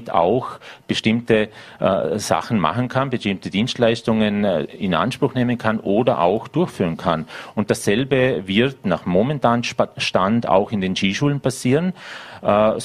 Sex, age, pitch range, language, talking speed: male, 40-59, 105-125 Hz, German, 130 wpm